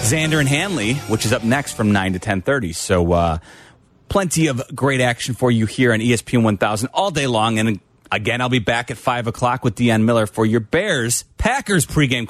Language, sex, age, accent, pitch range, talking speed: English, male, 30-49, American, 110-135 Hz, 200 wpm